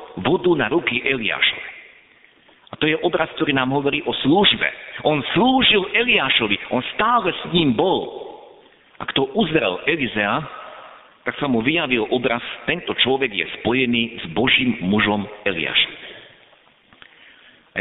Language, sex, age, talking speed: Slovak, male, 50-69, 130 wpm